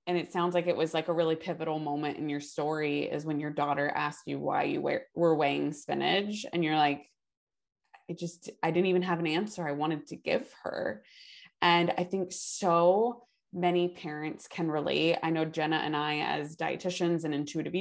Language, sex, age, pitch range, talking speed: English, female, 20-39, 150-175 Hz, 195 wpm